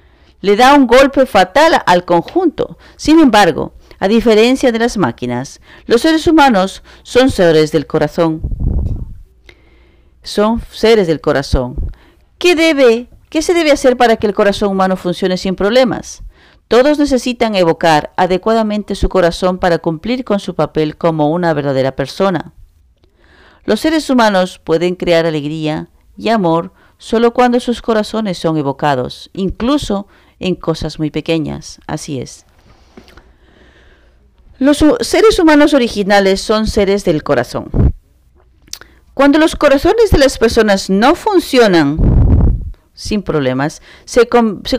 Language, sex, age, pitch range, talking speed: English, female, 40-59, 155-250 Hz, 125 wpm